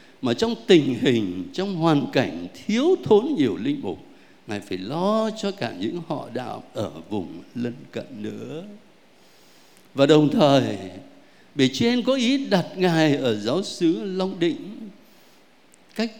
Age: 60-79